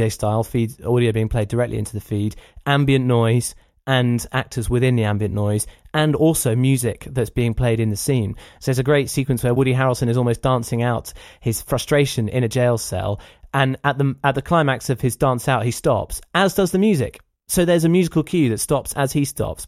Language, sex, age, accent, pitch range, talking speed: English, male, 20-39, British, 115-150 Hz, 215 wpm